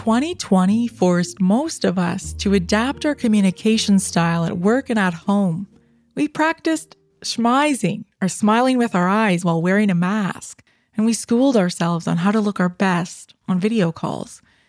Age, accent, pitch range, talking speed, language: 20-39, American, 180-230 Hz, 165 wpm, English